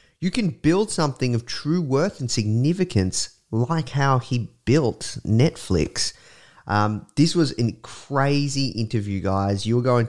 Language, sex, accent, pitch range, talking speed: English, male, Australian, 100-135 Hz, 135 wpm